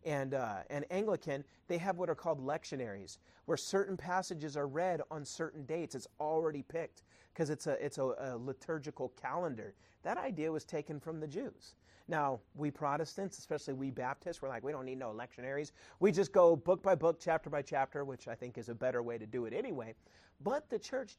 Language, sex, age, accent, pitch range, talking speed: English, male, 40-59, American, 145-210 Hz, 205 wpm